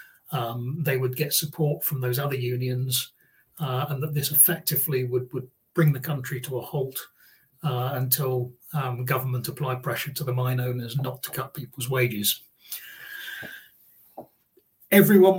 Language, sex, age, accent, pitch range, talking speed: English, male, 40-59, British, 125-155 Hz, 150 wpm